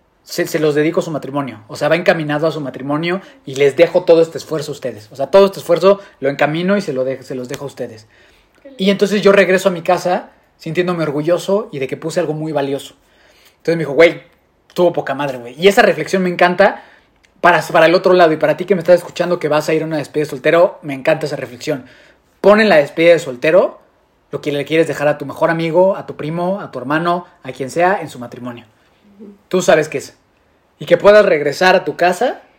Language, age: Spanish, 30-49